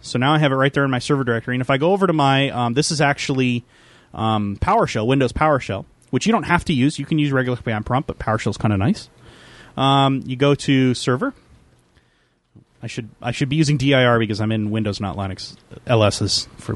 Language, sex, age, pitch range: English, male, 30-49, 120-160 Hz